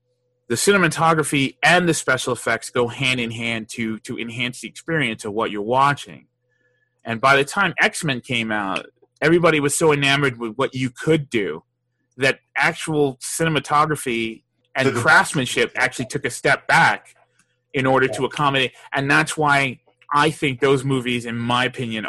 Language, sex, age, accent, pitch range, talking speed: English, male, 30-49, American, 115-145 Hz, 160 wpm